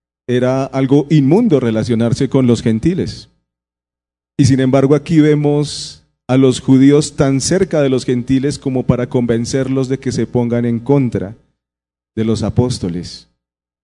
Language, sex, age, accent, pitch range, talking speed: Spanish, male, 40-59, Colombian, 110-135 Hz, 140 wpm